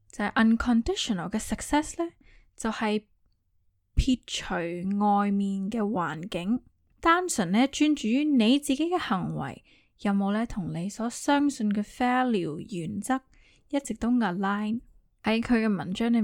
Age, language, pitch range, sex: 10-29, Chinese, 195-255 Hz, female